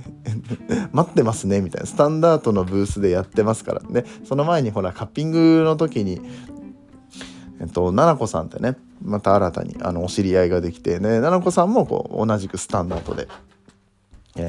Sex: male